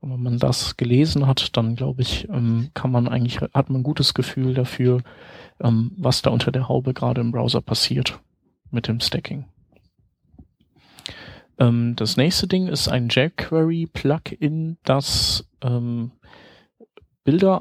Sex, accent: male, German